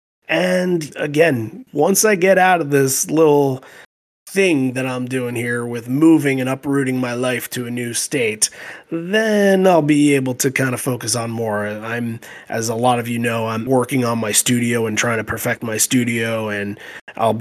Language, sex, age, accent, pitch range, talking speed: English, male, 30-49, American, 110-130 Hz, 185 wpm